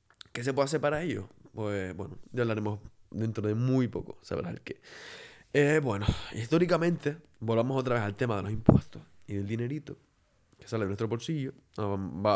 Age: 20-39